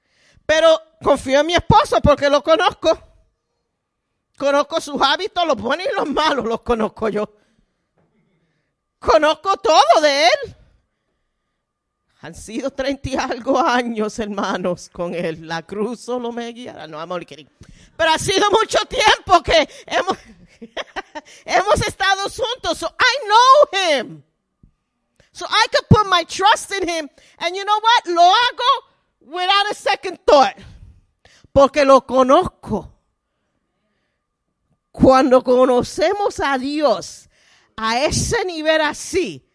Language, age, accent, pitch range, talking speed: Spanish, 40-59, American, 255-355 Hz, 125 wpm